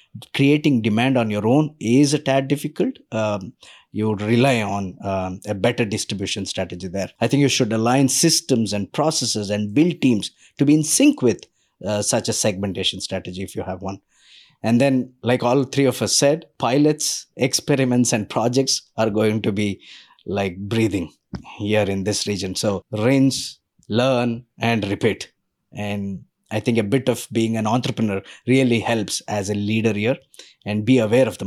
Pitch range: 105-135 Hz